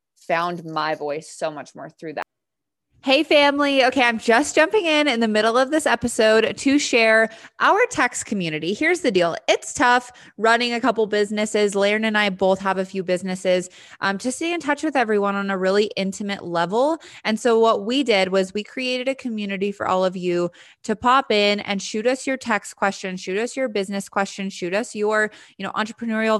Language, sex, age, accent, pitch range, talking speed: English, female, 20-39, American, 185-235 Hz, 200 wpm